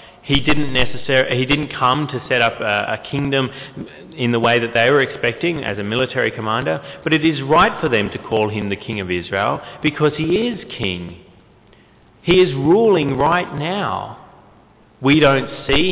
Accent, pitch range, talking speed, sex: Australian, 110-150 Hz, 175 wpm, male